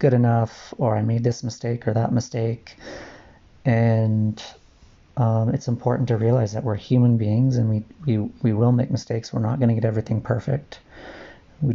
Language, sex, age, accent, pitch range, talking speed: English, male, 30-49, American, 110-125 Hz, 180 wpm